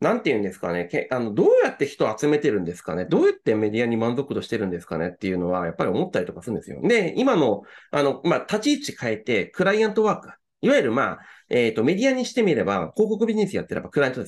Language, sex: Japanese, male